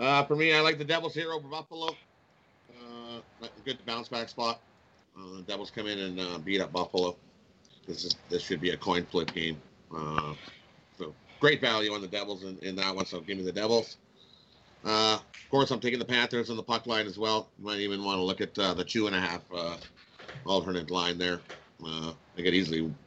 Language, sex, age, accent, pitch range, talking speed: English, male, 40-59, American, 95-120 Hz, 205 wpm